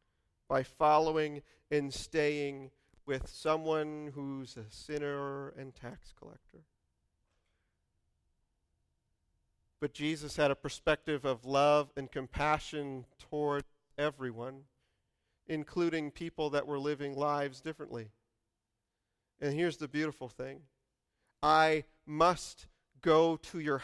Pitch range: 115-150 Hz